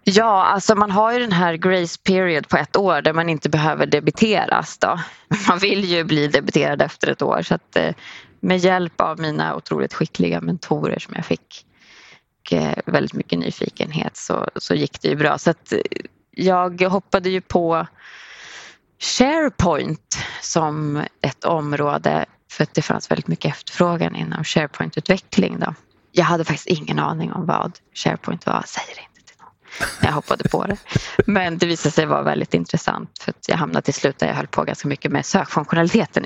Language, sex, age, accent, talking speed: Swedish, female, 20-39, native, 170 wpm